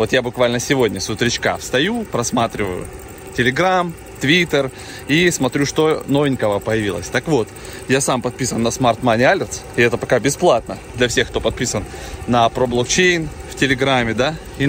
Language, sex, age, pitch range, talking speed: Russian, male, 20-39, 120-150 Hz, 155 wpm